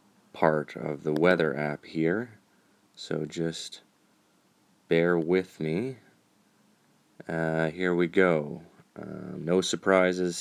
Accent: American